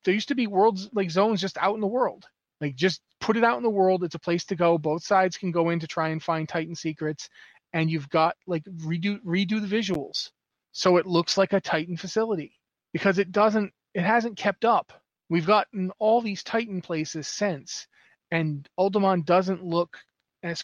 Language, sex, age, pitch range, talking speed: English, male, 30-49, 150-185 Hz, 205 wpm